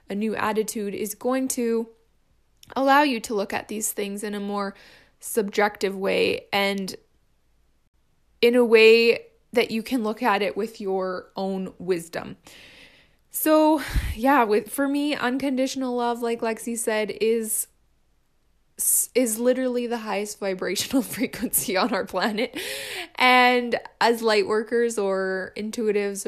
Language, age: English, 20-39